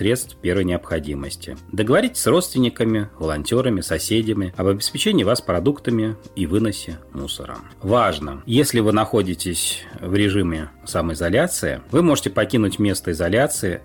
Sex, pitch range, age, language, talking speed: male, 85-120 Hz, 30-49, Russian, 115 wpm